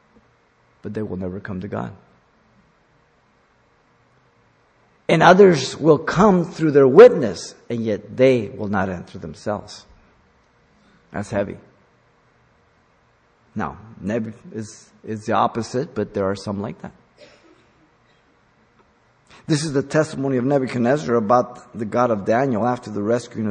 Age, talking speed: 50-69, 125 wpm